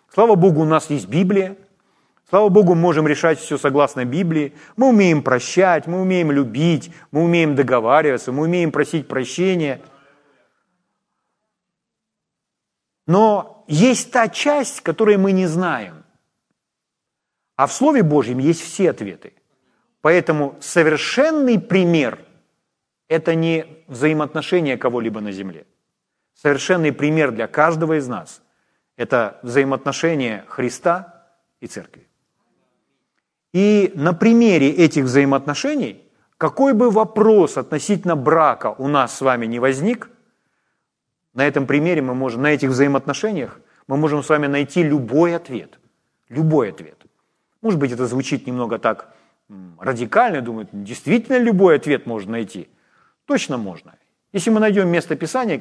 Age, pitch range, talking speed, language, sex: 40-59, 140-195 Hz, 125 wpm, Ukrainian, male